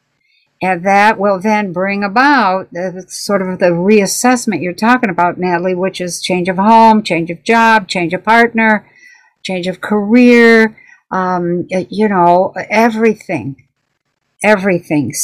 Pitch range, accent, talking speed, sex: 175-215 Hz, American, 130 wpm, female